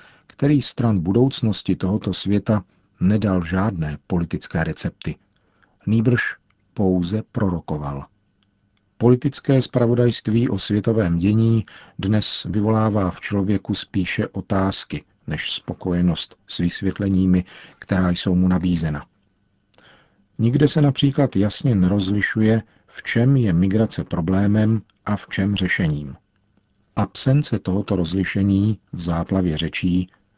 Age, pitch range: 50-69, 90-110 Hz